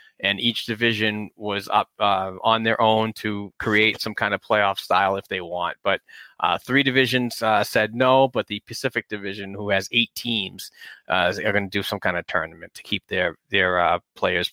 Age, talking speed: 30-49, 200 wpm